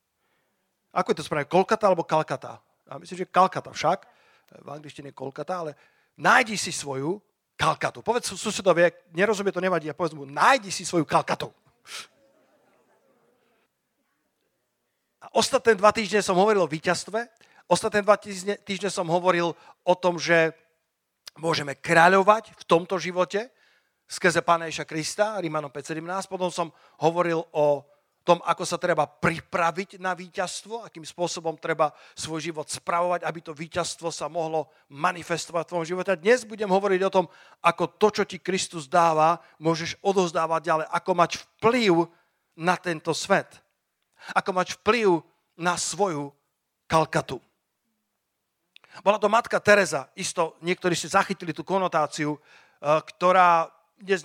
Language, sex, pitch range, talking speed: Slovak, male, 160-190 Hz, 140 wpm